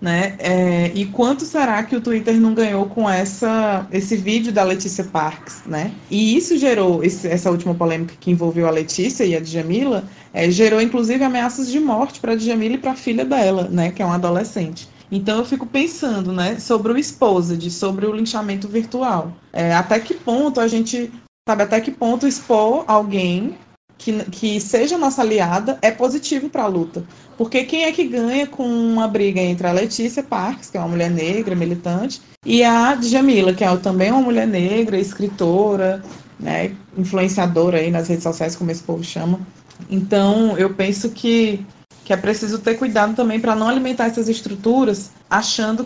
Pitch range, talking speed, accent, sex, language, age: 185-235 Hz, 175 wpm, Brazilian, female, Portuguese, 20-39